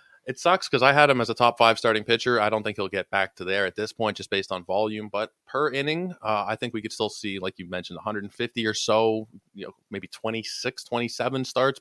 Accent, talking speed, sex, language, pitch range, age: American, 250 wpm, male, English, 100-120 Hz, 20-39